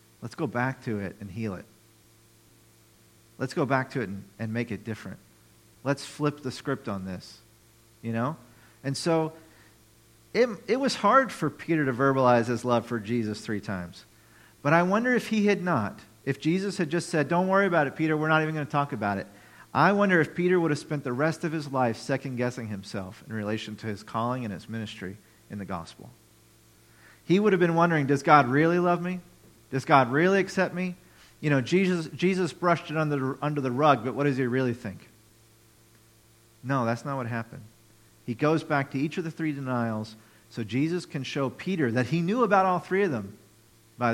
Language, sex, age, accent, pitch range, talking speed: English, male, 40-59, American, 115-155 Hz, 205 wpm